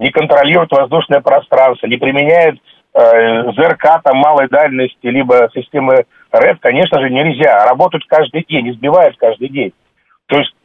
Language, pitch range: Russian, 145-190 Hz